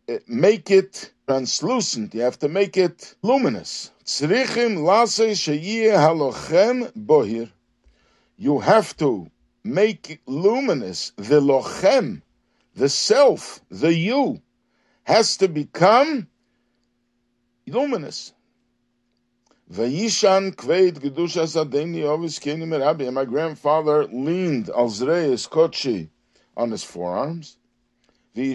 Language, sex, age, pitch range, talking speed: English, male, 60-79, 125-190 Hz, 65 wpm